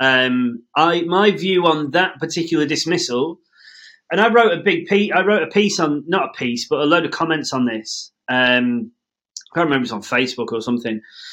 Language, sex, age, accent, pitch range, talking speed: English, male, 30-49, British, 130-190 Hz, 210 wpm